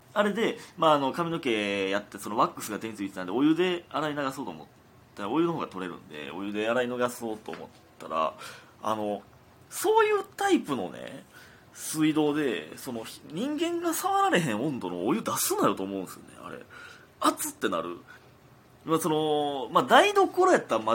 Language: Japanese